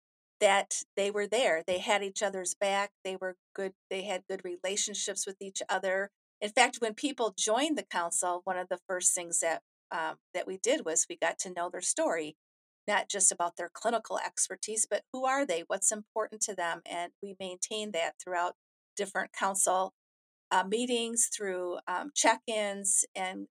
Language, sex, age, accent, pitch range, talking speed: English, female, 50-69, American, 185-220 Hz, 180 wpm